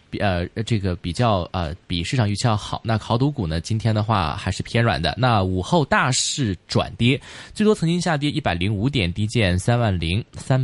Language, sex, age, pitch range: Chinese, male, 20-39, 100-145 Hz